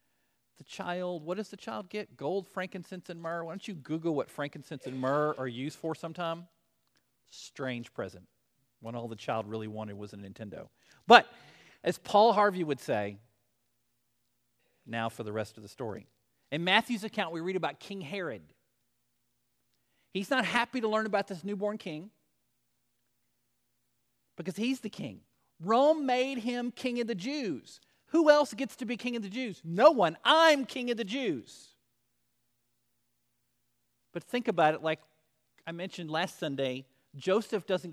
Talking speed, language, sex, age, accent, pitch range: 160 wpm, English, male, 40-59, American, 130-220 Hz